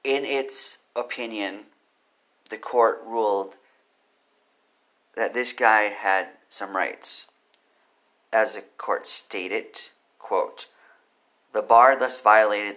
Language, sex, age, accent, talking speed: English, male, 40-59, American, 100 wpm